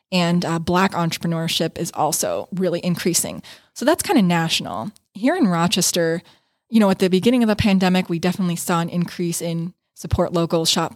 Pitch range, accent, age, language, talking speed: 170-195 Hz, American, 20-39, English, 180 wpm